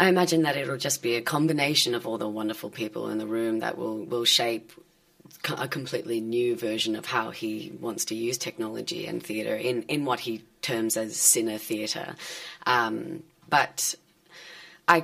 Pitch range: 120-175 Hz